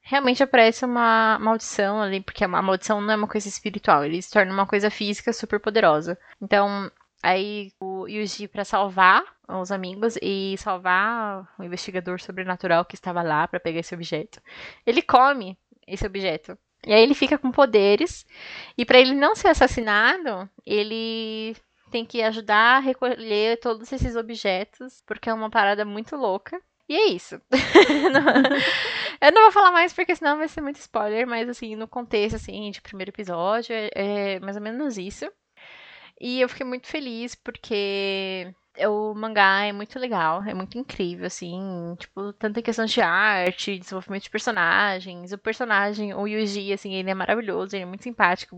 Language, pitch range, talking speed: Portuguese, 195-245 Hz, 165 wpm